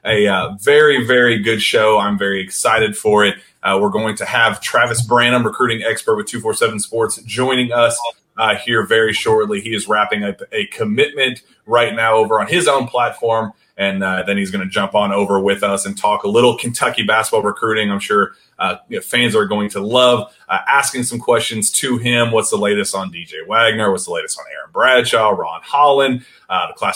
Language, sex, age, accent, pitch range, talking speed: English, male, 30-49, American, 105-130 Hz, 205 wpm